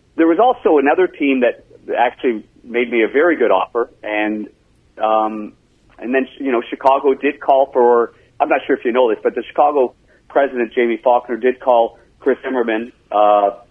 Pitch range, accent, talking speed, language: 105-125 Hz, American, 180 wpm, English